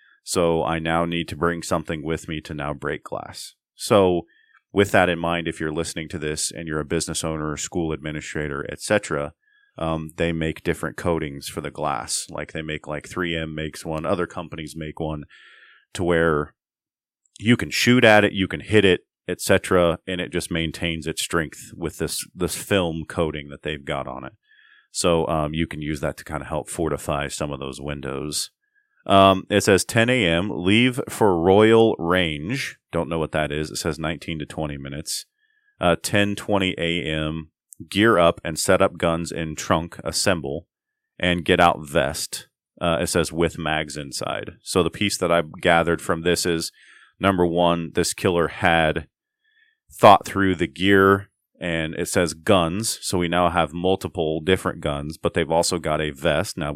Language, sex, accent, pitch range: English, male, American, 80-95 Hz